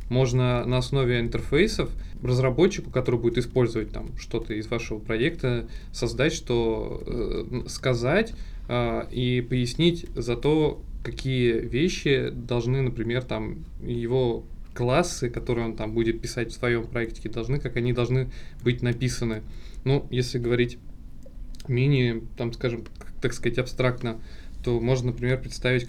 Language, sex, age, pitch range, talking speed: Russian, male, 20-39, 115-130 Hz, 130 wpm